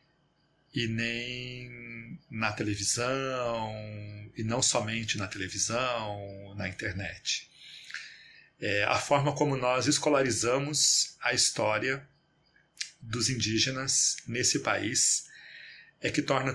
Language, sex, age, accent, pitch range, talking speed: Portuguese, male, 40-59, Brazilian, 110-145 Hz, 90 wpm